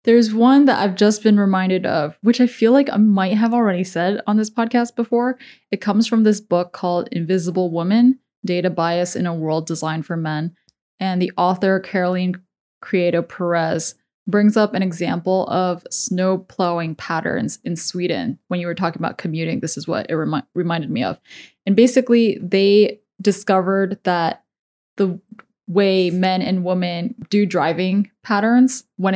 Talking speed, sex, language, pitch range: 165 wpm, female, English, 175-210 Hz